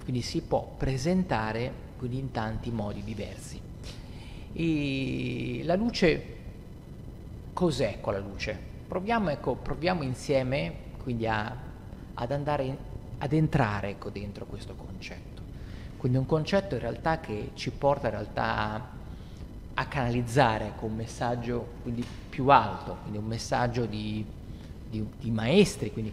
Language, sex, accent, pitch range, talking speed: Italian, male, native, 110-140 Hz, 125 wpm